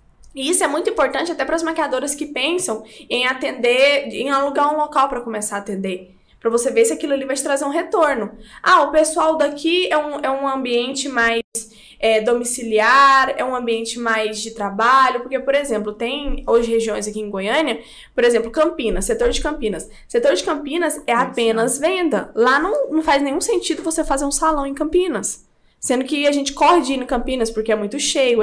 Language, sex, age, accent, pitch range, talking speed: Portuguese, female, 10-29, Brazilian, 225-285 Hz, 200 wpm